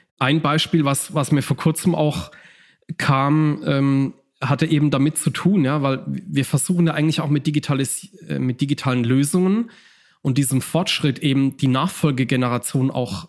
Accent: German